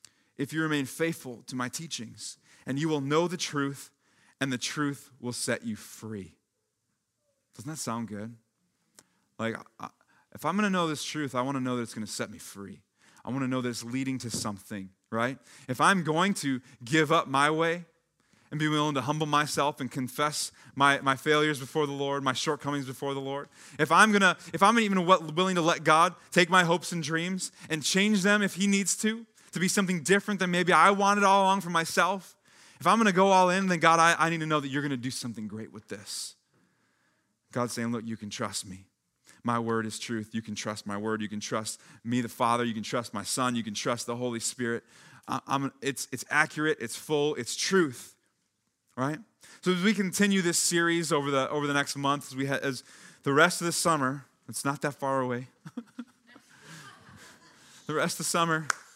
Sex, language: male, English